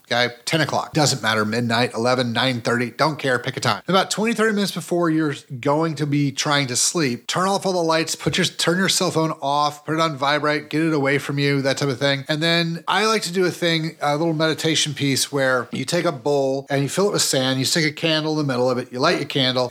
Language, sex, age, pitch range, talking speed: English, male, 30-49, 140-175 Hz, 265 wpm